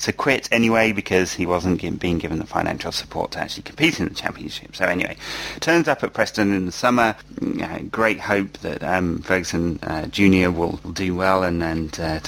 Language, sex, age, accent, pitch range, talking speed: English, male, 30-49, British, 90-110 Hz, 200 wpm